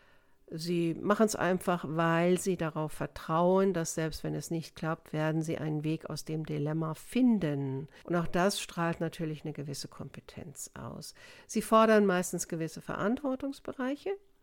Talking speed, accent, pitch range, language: 150 wpm, German, 170-215 Hz, German